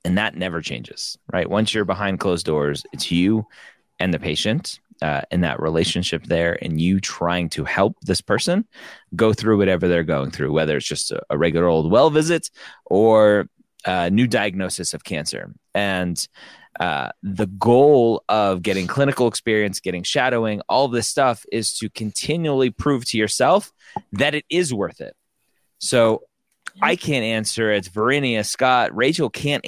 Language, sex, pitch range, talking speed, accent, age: English, male, 100-130 Hz, 165 wpm, American, 30-49